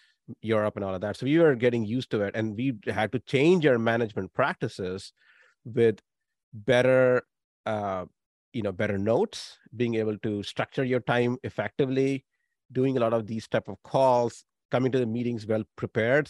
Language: English